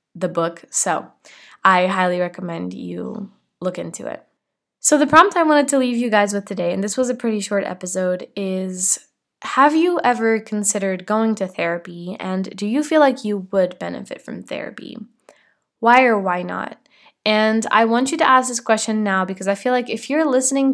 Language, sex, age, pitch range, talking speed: English, female, 10-29, 185-230 Hz, 190 wpm